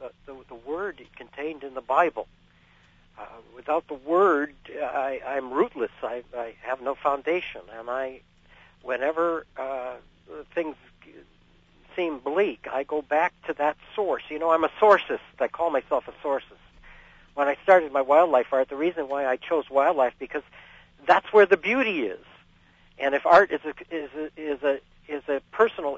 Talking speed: 170 wpm